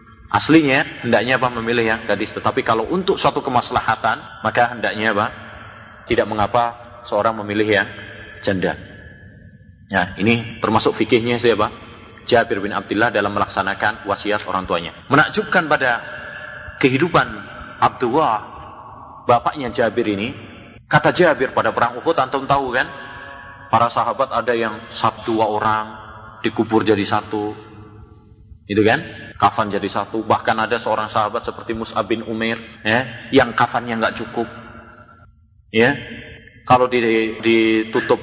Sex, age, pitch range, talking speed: male, 30-49, 105-120 Hz, 125 wpm